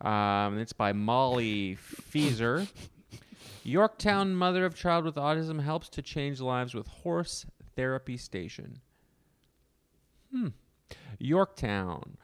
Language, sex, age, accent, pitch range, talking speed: English, male, 30-49, American, 110-145 Hz, 105 wpm